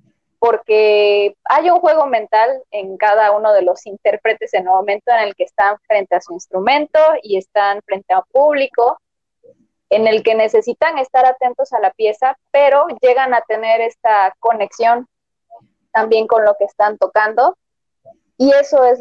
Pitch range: 205-265 Hz